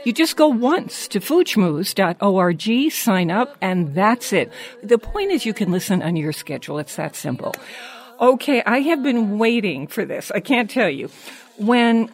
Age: 60-79